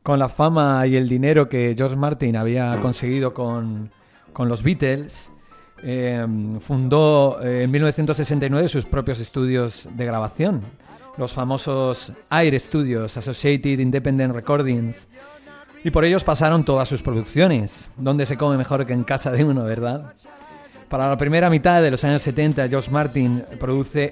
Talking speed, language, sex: 145 wpm, Spanish, male